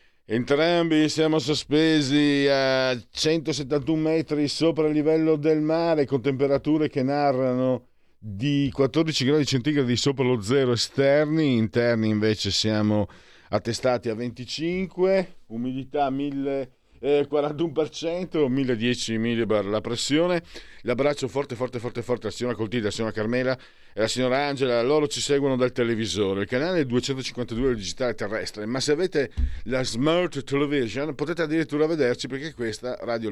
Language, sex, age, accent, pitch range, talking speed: Italian, male, 50-69, native, 100-140 Hz, 135 wpm